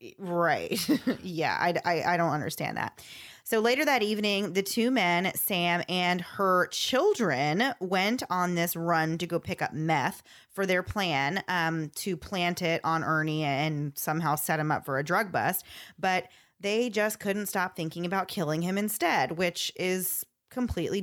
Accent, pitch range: American, 155-185 Hz